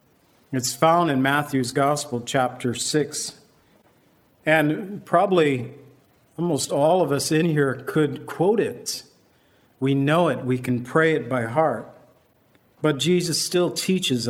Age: 50-69